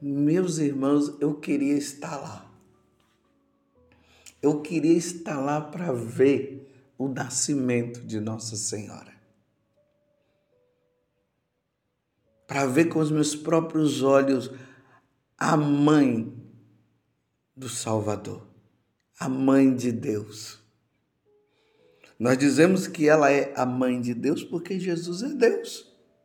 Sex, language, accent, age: male, Portuguese, Brazilian, 50-69